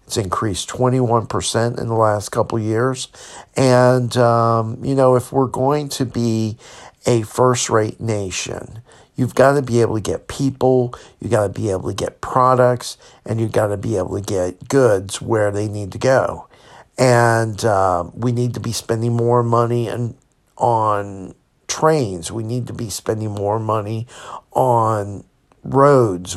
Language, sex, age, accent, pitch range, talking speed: English, male, 50-69, American, 105-125 Hz, 160 wpm